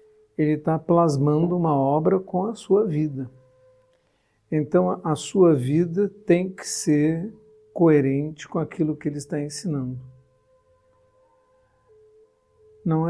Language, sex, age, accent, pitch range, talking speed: Portuguese, male, 60-79, Brazilian, 135-180 Hz, 110 wpm